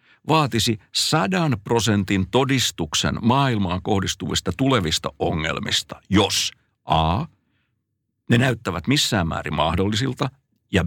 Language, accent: Finnish, native